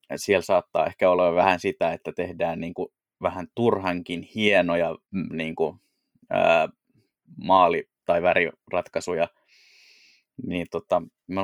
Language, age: Finnish, 20-39